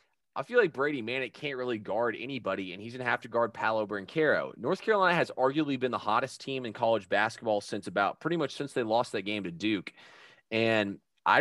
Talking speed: 225 wpm